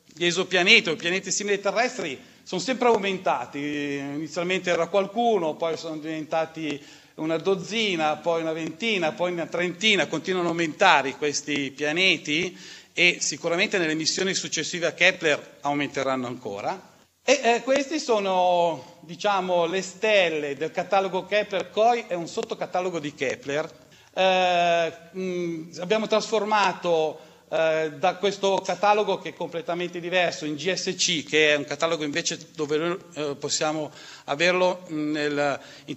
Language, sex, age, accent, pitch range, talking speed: Italian, male, 40-59, native, 155-200 Hz, 130 wpm